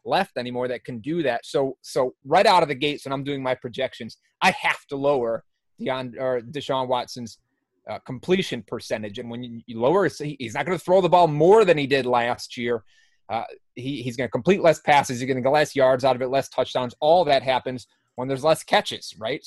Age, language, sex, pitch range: 30-49, English, male, 125-155 Hz